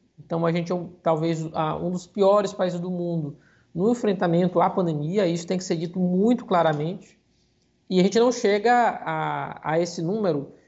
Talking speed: 175 wpm